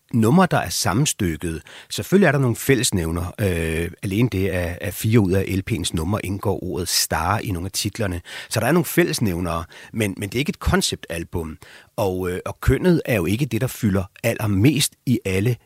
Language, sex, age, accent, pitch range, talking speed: Danish, male, 30-49, native, 95-120 Hz, 195 wpm